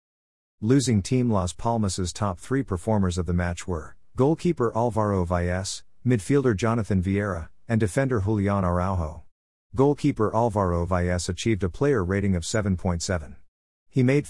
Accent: American